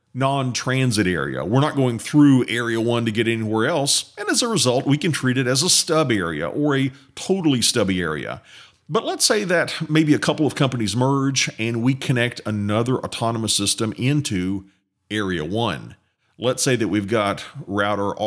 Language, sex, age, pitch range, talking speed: English, male, 40-59, 115-145 Hz, 175 wpm